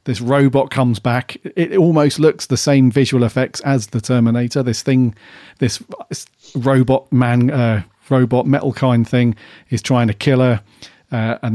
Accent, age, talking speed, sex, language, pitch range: British, 40-59, 160 wpm, male, English, 110-130 Hz